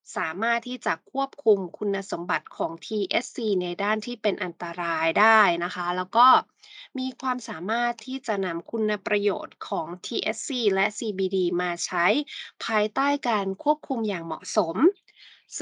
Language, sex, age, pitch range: Thai, female, 20-39, 195-260 Hz